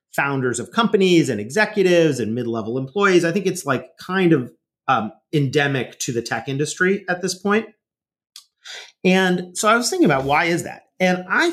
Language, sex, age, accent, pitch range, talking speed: English, male, 30-49, American, 130-175 Hz, 175 wpm